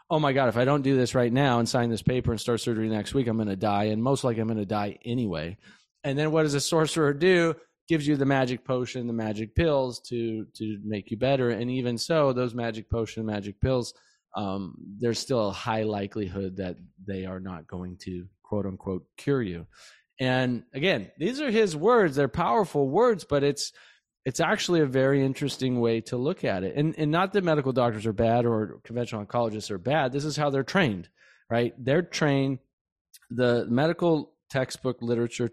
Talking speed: 205 wpm